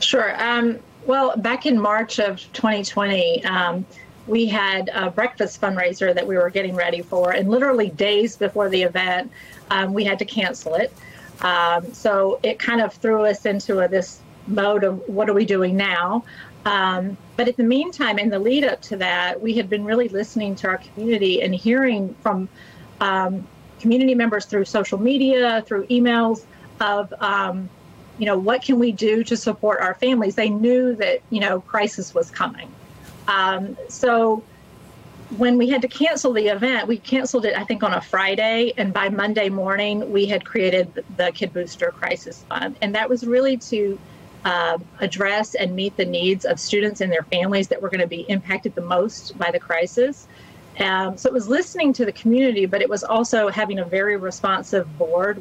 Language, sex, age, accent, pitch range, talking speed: English, female, 40-59, American, 185-235 Hz, 185 wpm